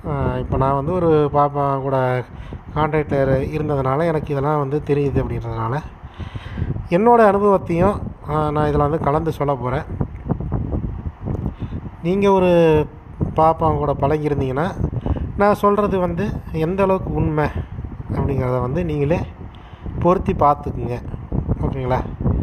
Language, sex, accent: Tamil, male, native